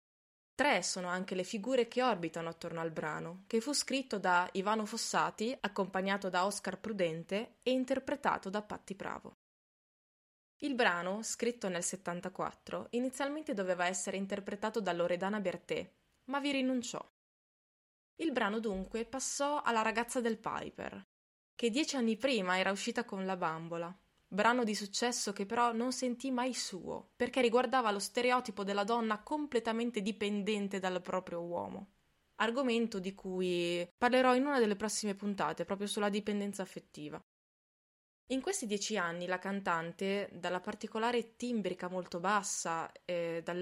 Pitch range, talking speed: 180-235 Hz, 140 wpm